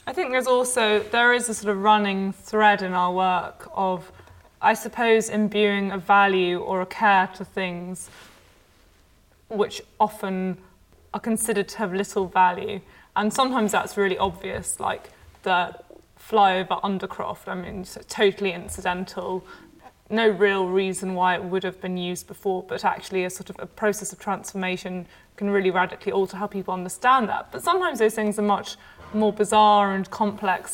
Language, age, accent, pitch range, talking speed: English, 20-39, British, 190-215 Hz, 160 wpm